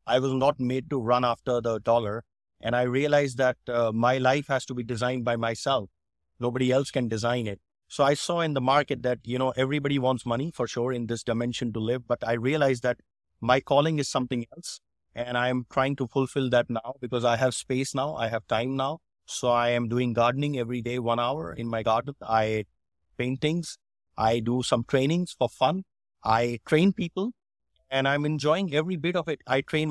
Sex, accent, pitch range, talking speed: male, Indian, 120-145 Hz, 210 wpm